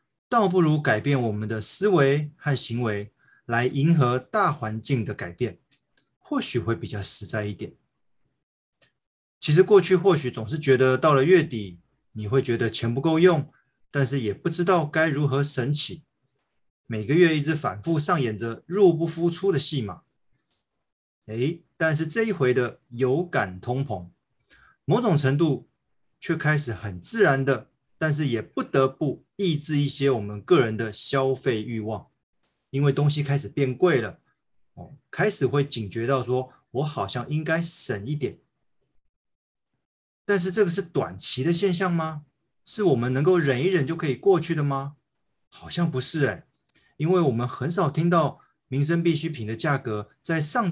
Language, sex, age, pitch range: Chinese, male, 20-39, 120-165 Hz